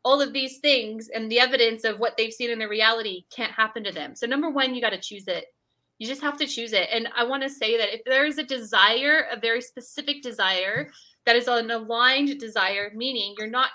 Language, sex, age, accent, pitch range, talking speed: English, female, 20-39, American, 205-260 Hz, 240 wpm